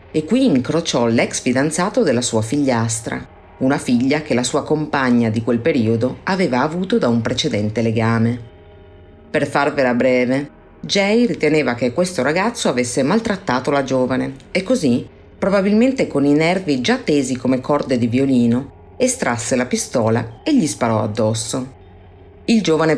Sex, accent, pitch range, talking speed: female, native, 125-175 Hz, 145 wpm